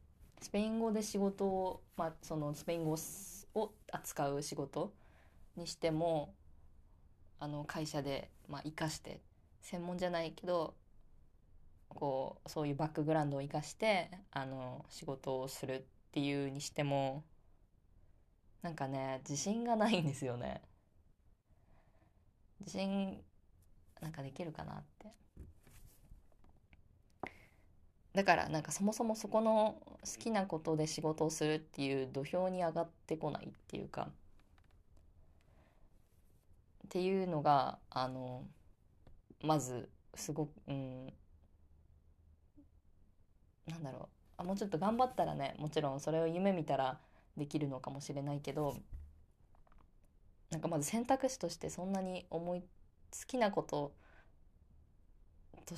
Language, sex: Japanese, female